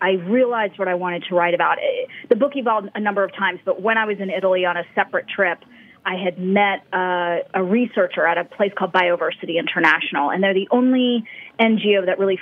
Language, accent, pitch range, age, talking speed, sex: English, American, 180-220 Hz, 30-49, 215 wpm, female